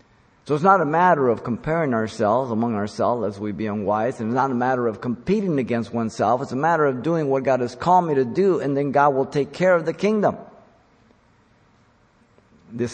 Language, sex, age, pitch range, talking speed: English, male, 50-69, 110-135 Hz, 205 wpm